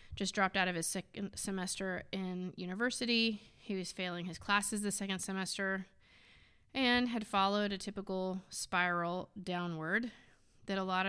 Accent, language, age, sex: American, English, 30-49, female